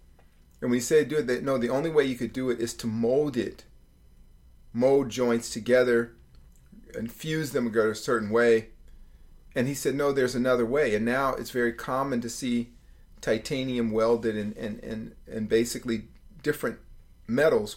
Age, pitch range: 40-59, 110-145 Hz